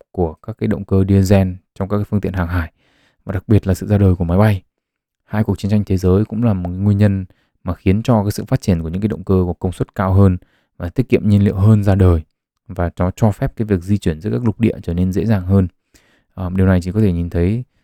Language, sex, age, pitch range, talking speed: Vietnamese, male, 20-39, 90-110 Hz, 280 wpm